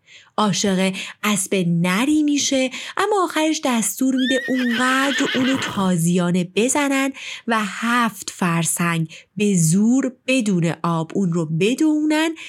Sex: female